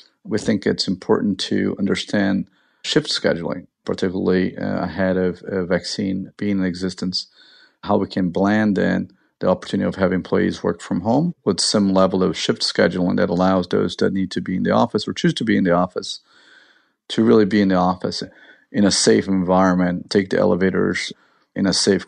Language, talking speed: English, 185 wpm